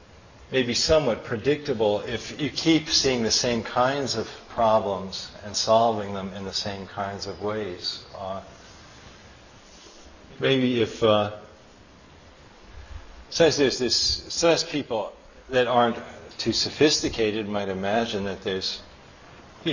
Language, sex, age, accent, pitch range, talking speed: English, male, 50-69, American, 95-120 Hz, 120 wpm